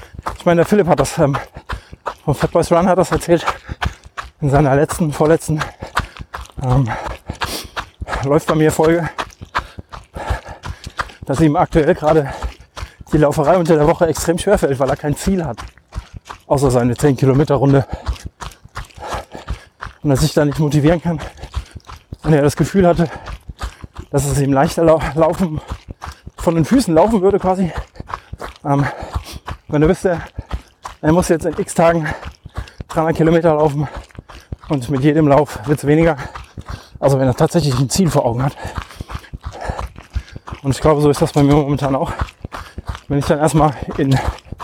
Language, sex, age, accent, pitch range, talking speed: German, male, 20-39, German, 135-165 Hz, 145 wpm